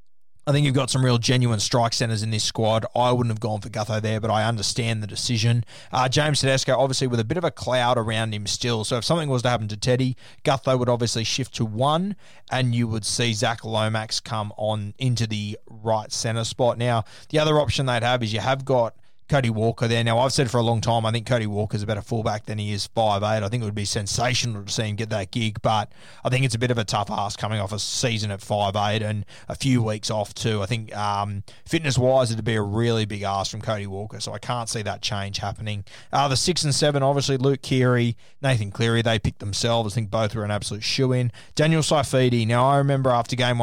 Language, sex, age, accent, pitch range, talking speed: English, male, 20-39, Australian, 105-125 Hz, 245 wpm